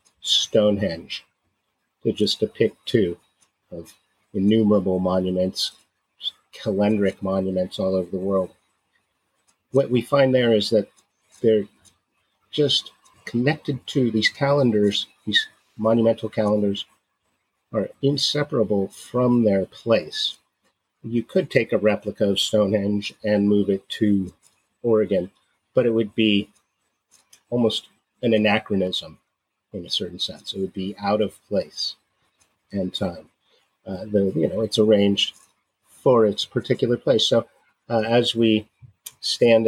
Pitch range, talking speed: 100-115 Hz, 120 wpm